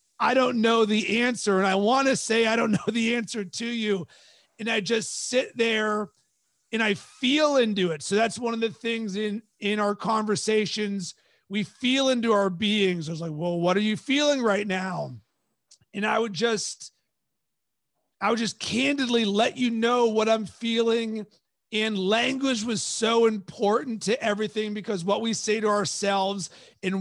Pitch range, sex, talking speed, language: 200-235 Hz, male, 175 wpm, English